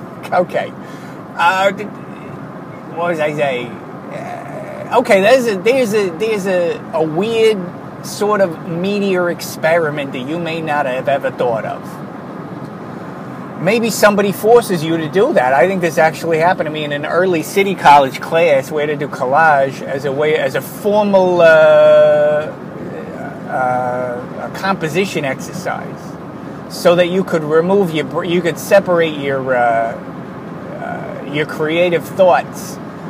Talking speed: 150 wpm